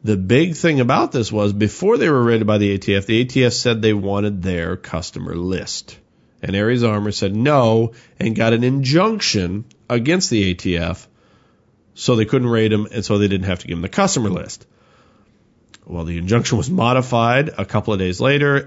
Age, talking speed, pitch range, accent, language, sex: 40-59, 190 wpm, 100-120 Hz, American, English, male